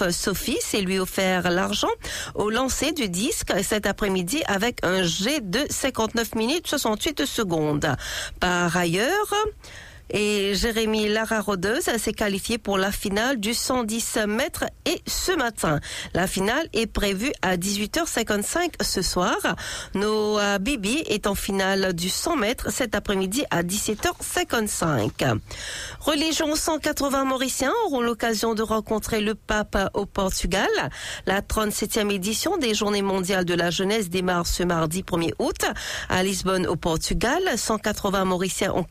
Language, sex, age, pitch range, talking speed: English, female, 40-59, 190-235 Hz, 135 wpm